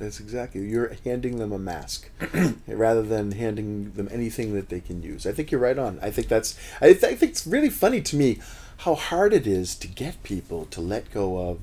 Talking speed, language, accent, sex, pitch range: 225 wpm, English, American, male, 100-150 Hz